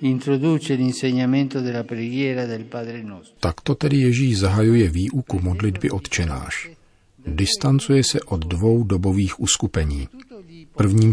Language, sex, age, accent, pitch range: Czech, male, 50-69, native, 90-115 Hz